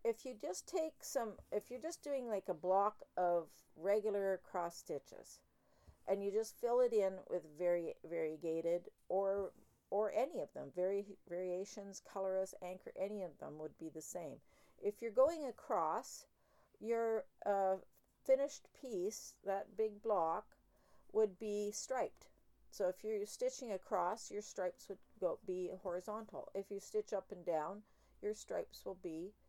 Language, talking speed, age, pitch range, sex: English, 155 wpm, 50-69, 175-215 Hz, female